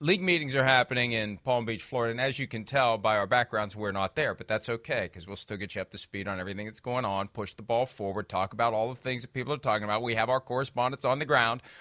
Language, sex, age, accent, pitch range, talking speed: English, male, 40-59, American, 120-155 Hz, 285 wpm